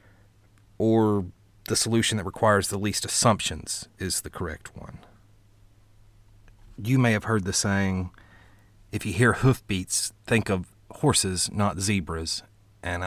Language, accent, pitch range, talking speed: English, American, 95-105 Hz, 130 wpm